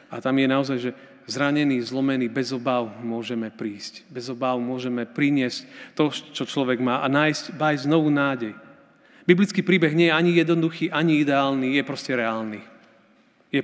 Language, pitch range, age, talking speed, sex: Slovak, 120-155 Hz, 40-59, 160 wpm, male